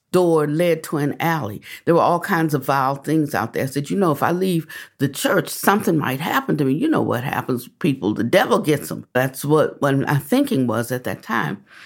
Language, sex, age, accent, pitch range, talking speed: English, female, 60-79, American, 130-170 Hz, 240 wpm